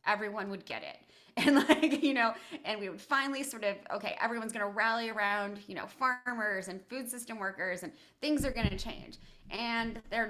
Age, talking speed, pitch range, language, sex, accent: 20-39, 205 wpm, 210-275 Hz, English, female, American